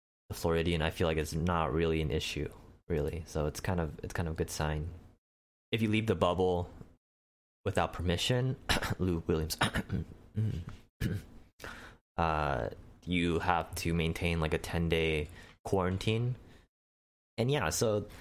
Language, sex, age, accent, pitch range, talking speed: English, male, 20-39, American, 85-105 Hz, 140 wpm